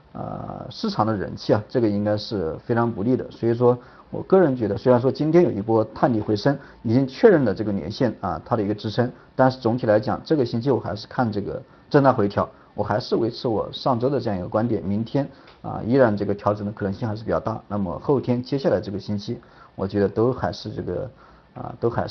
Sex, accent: male, native